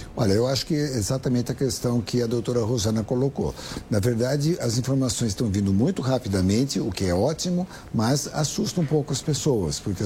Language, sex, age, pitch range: Portuguese, male, 60-79, 115-155 Hz